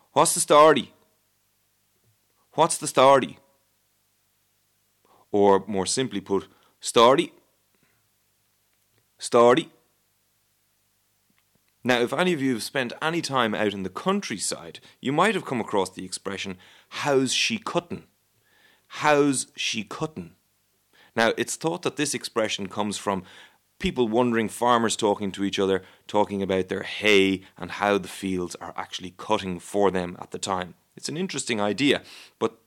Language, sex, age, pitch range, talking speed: English, male, 30-49, 100-125 Hz, 135 wpm